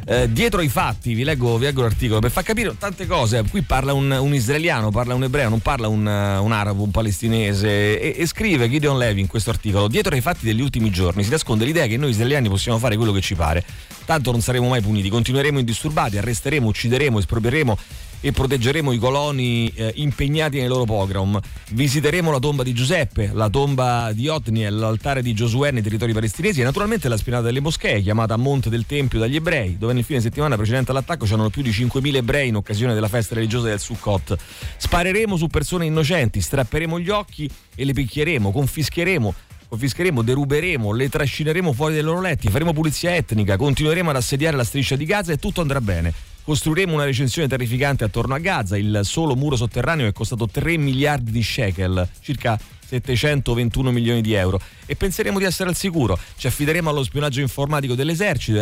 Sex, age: male, 30-49